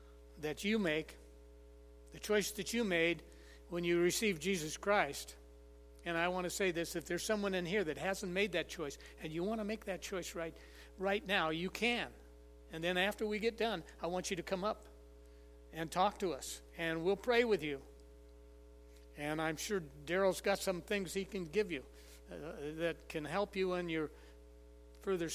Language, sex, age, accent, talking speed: English, male, 60-79, American, 190 wpm